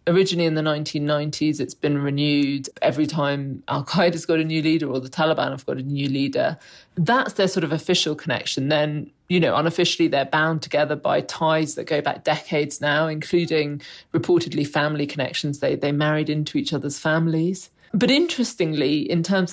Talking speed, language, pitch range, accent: 175 wpm, English, 150-180 Hz, British